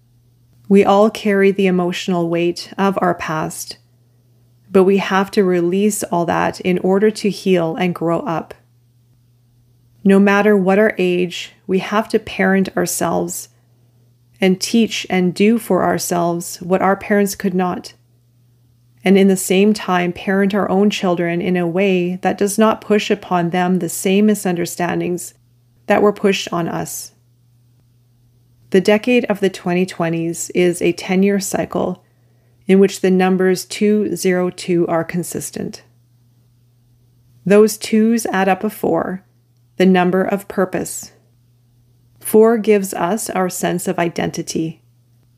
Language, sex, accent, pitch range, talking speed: English, female, American, 120-195 Hz, 140 wpm